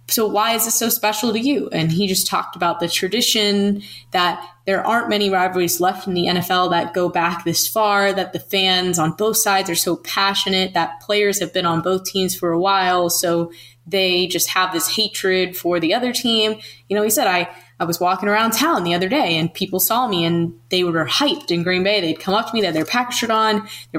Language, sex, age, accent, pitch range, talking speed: English, female, 10-29, American, 165-205 Hz, 235 wpm